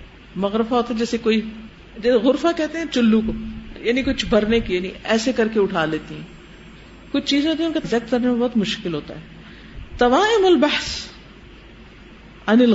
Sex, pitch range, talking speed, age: female, 205-305 Hz, 180 wpm, 50-69